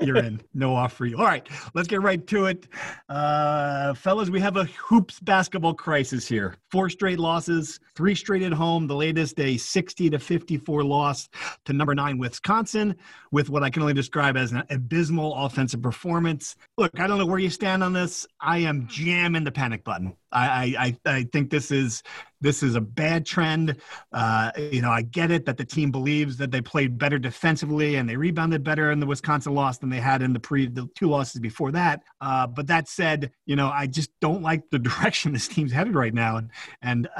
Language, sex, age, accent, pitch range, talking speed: English, male, 40-59, American, 130-175 Hz, 210 wpm